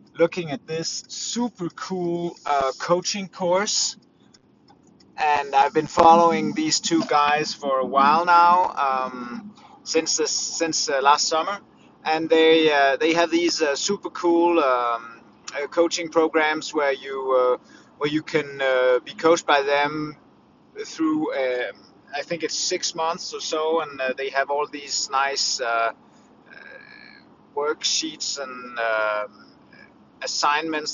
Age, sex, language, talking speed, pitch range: 30-49, male, English, 140 wpm, 140-190 Hz